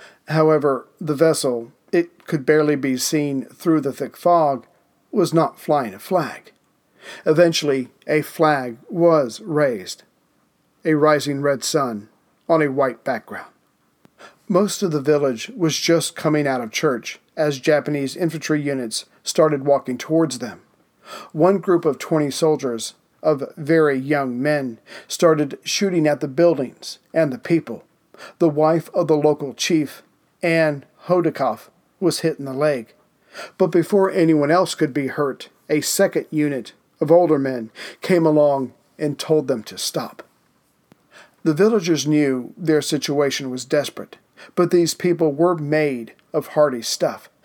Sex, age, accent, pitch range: male, 40-59, American, 140-165 Hz